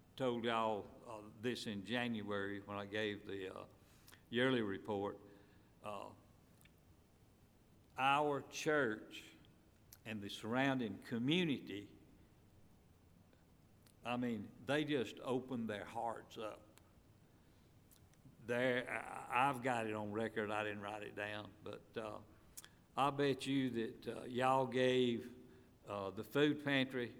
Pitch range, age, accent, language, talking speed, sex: 105-130 Hz, 60-79, American, English, 115 wpm, male